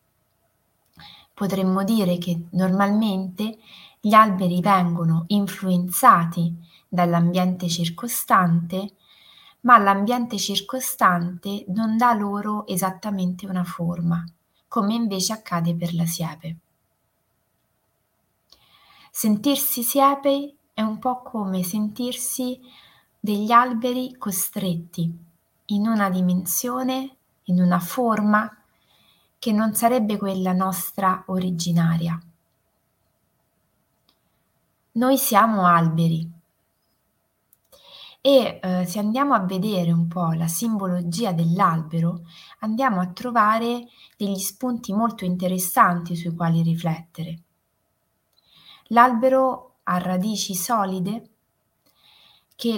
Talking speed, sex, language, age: 85 wpm, female, Italian, 20-39